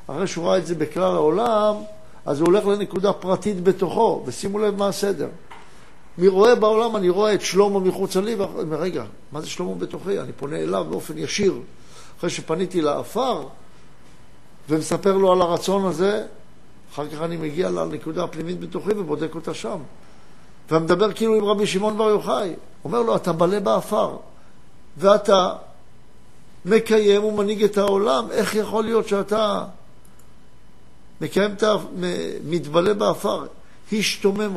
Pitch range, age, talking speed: 165-210 Hz, 60-79, 140 wpm